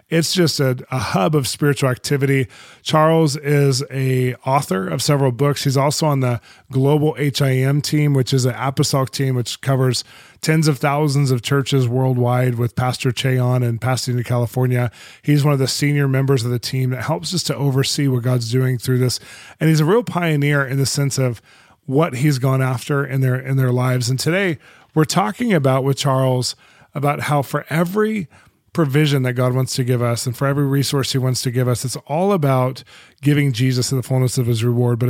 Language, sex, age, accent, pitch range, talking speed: English, male, 20-39, American, 125-150 Hz, 205 wpm